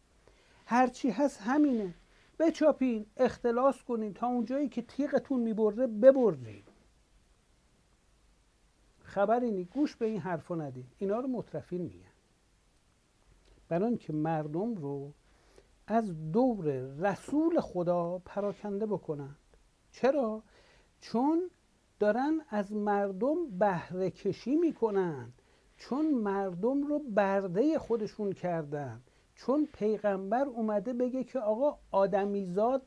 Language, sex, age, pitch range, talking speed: Persian, male, 60-79, 180-245 Hz, 100 wpm